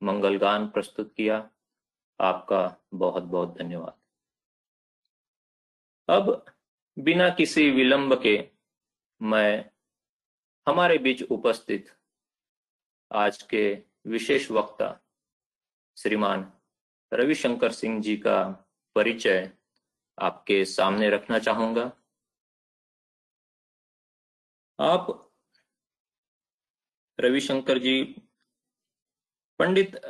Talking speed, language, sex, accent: 70 wpm, Hindi, male, native